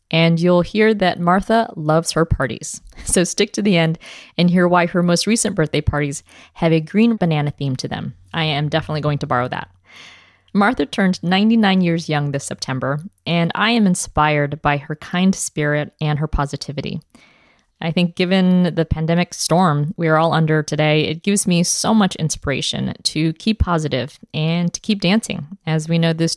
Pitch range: 150-185 Hz